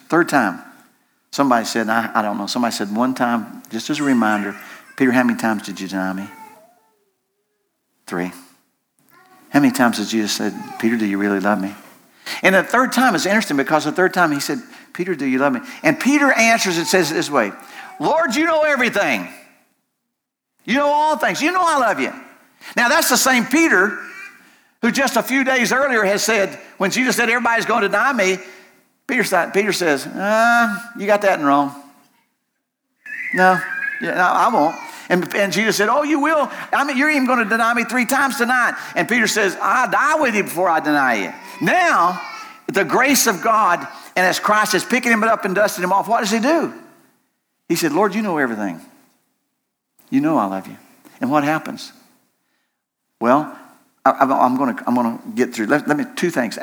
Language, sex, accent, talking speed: English, male, American, 195 wpm